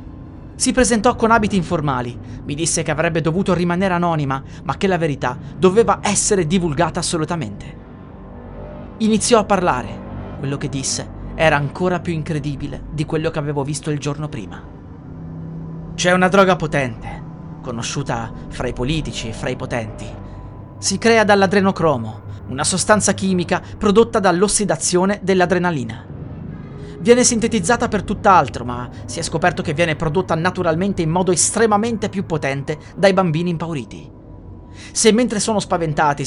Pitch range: 135-190 Hz